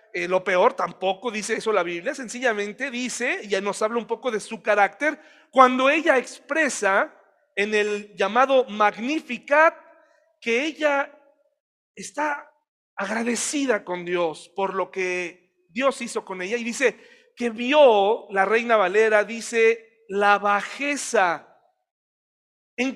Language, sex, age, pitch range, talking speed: Spanish, male, 40-59, 205-280 Hz, 130 wpm